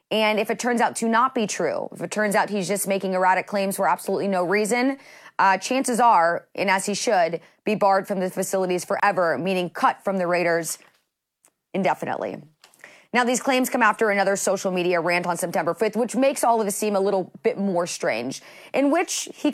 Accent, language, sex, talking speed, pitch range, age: American, English, female, 205 wpm, 175-220 Hz, 30-49